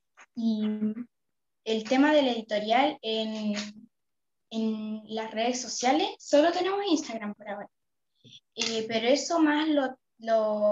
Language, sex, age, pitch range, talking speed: Spanish, female, 10-29, 220-260 Hz, 120 wpm